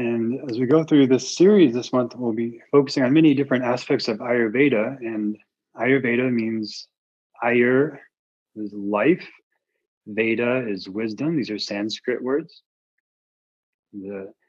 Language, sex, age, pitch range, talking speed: English, male, 20-39, 105-130 Hz, 135 wpm